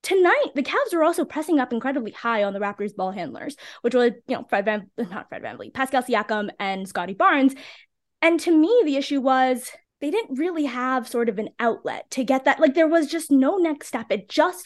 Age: 20-39